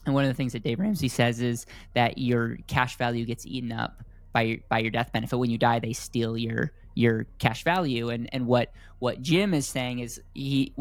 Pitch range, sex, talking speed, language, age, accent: 115-135 Hz, male, 220 wpm, English, 10-29, American